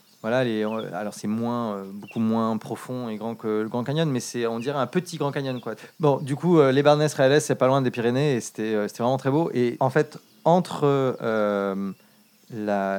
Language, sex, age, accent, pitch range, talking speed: French, male, 30-49, French, 105-135 Hz, 225 wpm